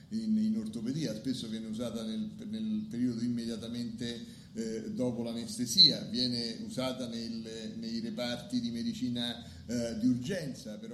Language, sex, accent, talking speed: Italian, male, native, 125 wpm